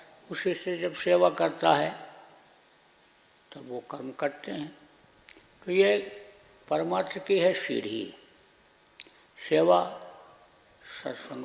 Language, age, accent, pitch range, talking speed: Hindi, 60-79, native, 155-185 Hz, 105 wpm